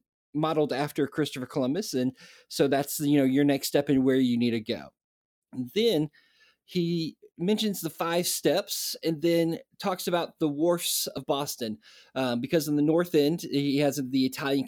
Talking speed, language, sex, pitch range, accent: 175 wpm, English, male, 130-155 Hz, American